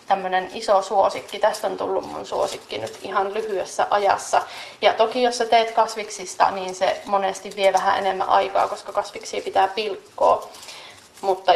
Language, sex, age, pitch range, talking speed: Finnish, female, 30-49, 200-235 Hz, 155 wpm